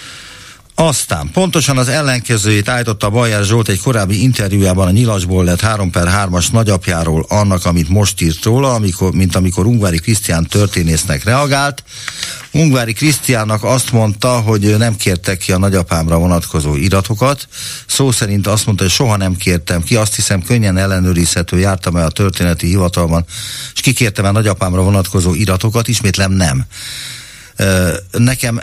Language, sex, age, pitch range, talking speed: Hungarian, male, 50-69, 90-120 Hz, 140 wpm